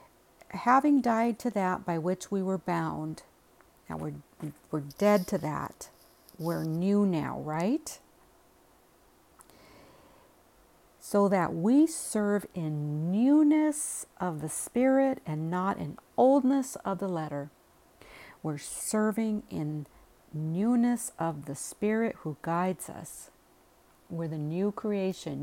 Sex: female